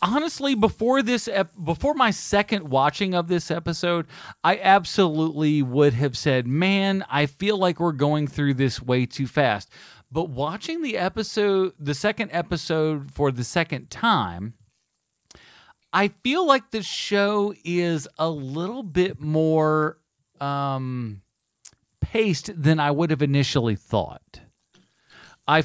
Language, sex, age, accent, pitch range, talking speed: English, male, 40-59, American, 130-175 Hz, 130 wpm